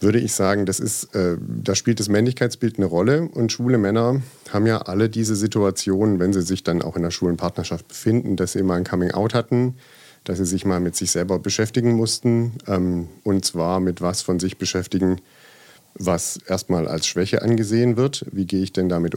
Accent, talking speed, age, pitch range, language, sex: German, 195 wpm, 50-69, 90-110 Hz, German, male